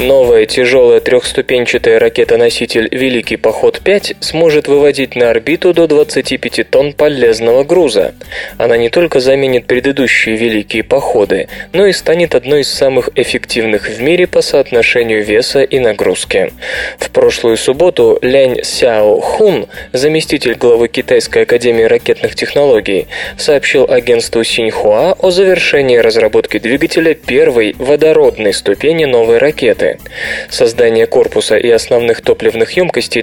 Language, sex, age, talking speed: Russian, male, 20-39, 120 wpm